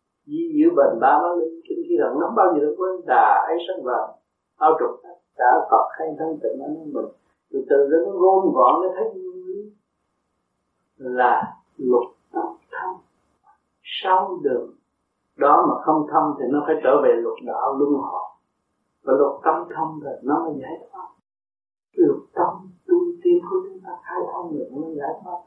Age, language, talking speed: 60-79, Vietnamese, 175 wpm